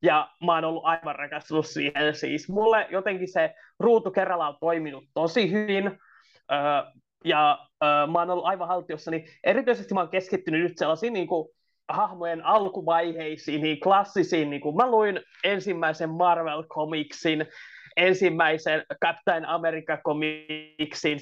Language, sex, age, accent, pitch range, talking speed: Finnish, male, 20-39, native, 155-190 Hz, 125 wpm